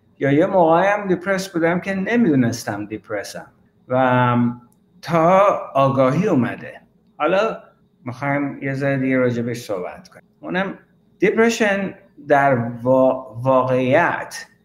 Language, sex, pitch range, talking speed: Persian, male, 130-180 Hz, 100 wpm